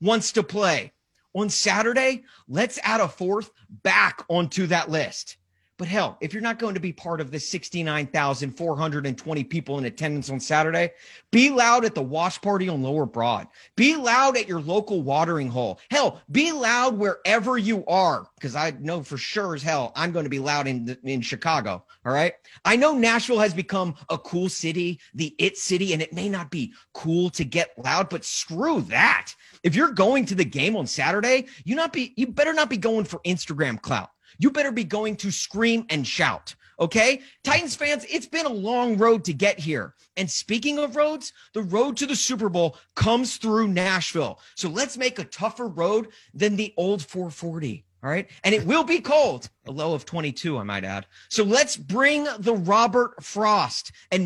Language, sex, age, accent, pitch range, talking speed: English, male, 30-49, American, 160-235 Hz, 190 wpm